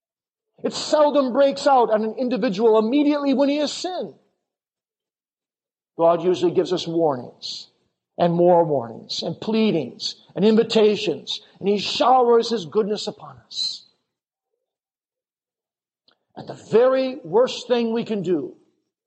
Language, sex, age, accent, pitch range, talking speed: English, male, 50-69, American, 185-255 Hz, 125 wpm